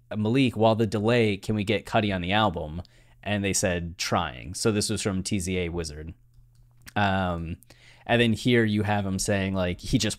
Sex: male